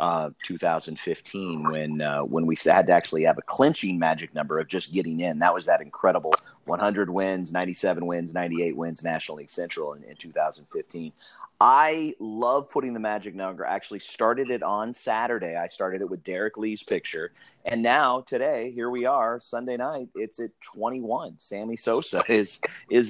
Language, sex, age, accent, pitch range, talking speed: English, male, 30-49, American, 85-110 Hz, 175 wpm